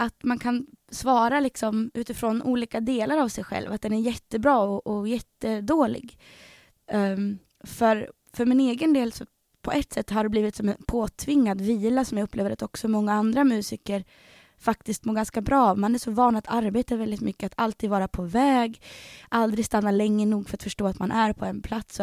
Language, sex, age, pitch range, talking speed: Swedish, female, 20-39, 200-240 Hz, 200 wpm